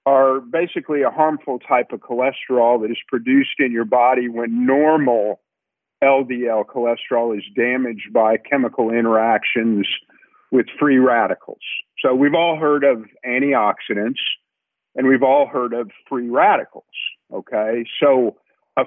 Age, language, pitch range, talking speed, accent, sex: 50-69, English, 125-160 Hz, 130 wpm, American, male